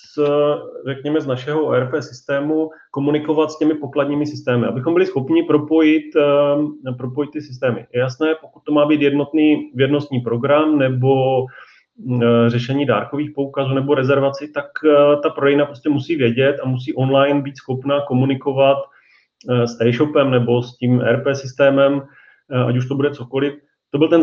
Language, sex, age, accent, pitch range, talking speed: Czech, male, 30-49, native, 120-145 Hz, 145 wpm